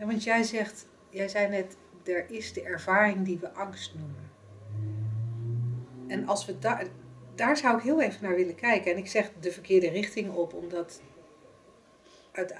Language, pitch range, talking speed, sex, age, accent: Dutch, 175-215 Hz, 165 wpm, female, 40-59, Dutch